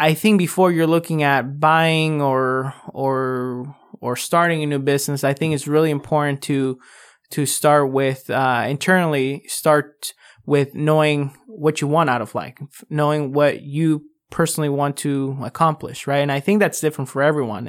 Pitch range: 140-160 Hz